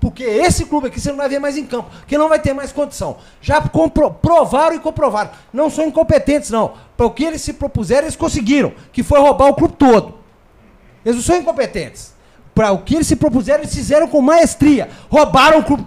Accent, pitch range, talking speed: Brazilian, 250-310 Hz, 210 wpm